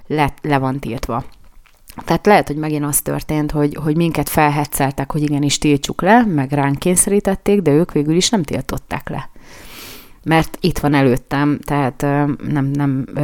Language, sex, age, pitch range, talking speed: Hungarian, female, 30-49, 145-165 Hz, 155 wpm